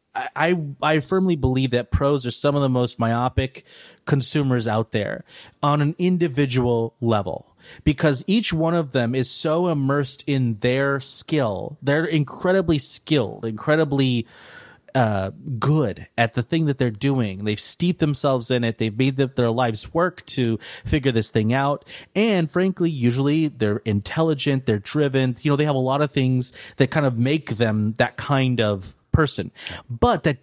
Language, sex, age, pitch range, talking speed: English, male, 30-49, 120-150 Hz, 165 wpm